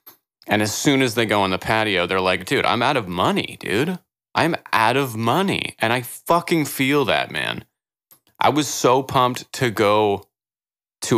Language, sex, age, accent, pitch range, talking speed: English, male, 30-49, American, 105-135 Hz, 185 wpm